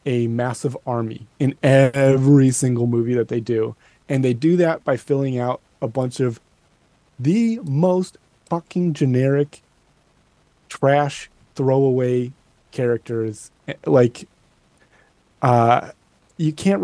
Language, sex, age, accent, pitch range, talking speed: English, male, 30-49, American, 125-160 Hz, 110 wpm